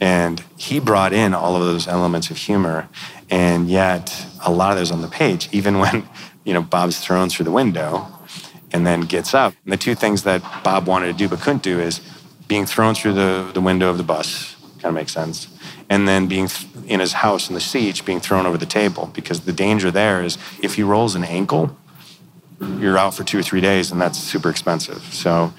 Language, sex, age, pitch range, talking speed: English, male, 30-49, 90-100 Hz, 225 wpm